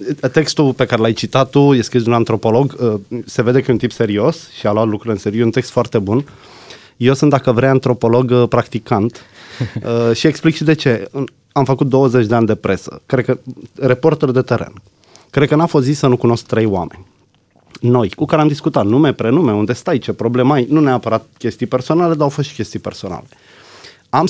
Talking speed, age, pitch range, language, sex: 205 wpm, 20-39, 115-155 Hz, Romanian, male